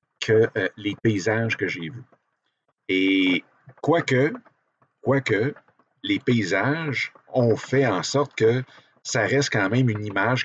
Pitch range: 105-135 Hz